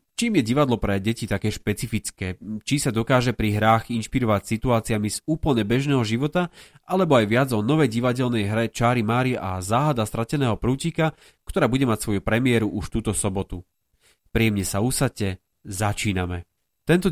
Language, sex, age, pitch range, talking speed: Slovak, male, 30-49, 110-135 Hz, 155 wpm